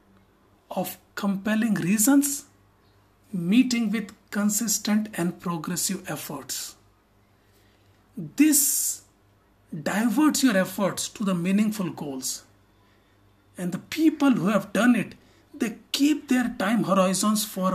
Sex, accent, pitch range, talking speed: male, Indian, 160-240 Hz, 100 wpm